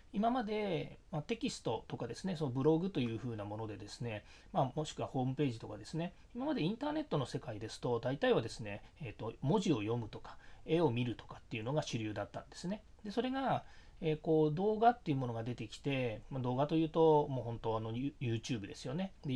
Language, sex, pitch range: Japanese, male, 115-170 Hz